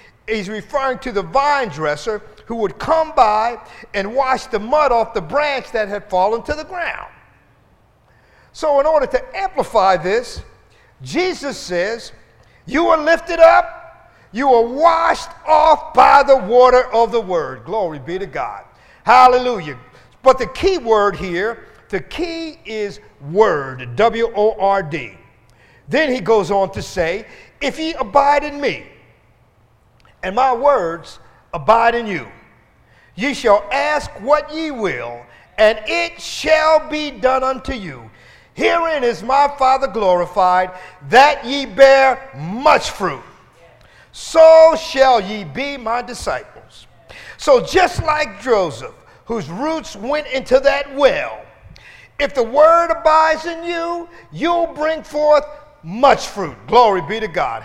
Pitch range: 195-300 Hz